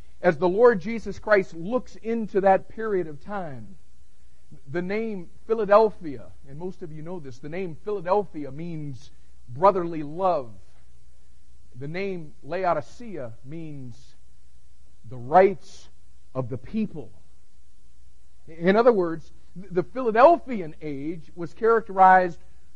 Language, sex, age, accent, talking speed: English, male, 50-69, American, 115 wpm